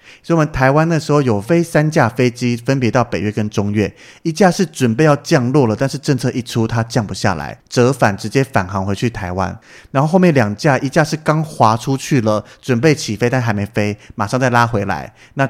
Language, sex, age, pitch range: Chinese, male, 30-49, 110-145 Hz